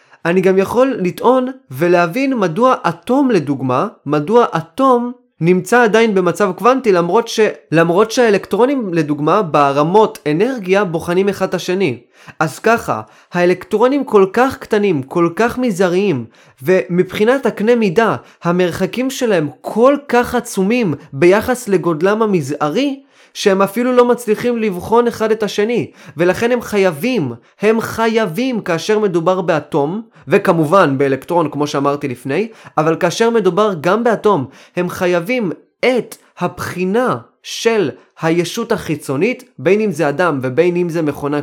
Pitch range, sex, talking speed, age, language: 170-225 Hz, male, 125 wpm, 20-39, Hebrew